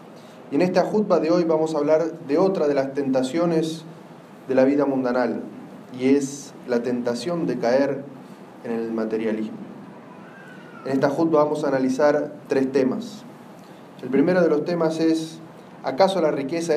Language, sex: Spanish, male